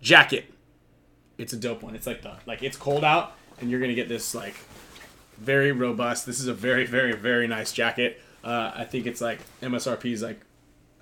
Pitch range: 110-135 Hz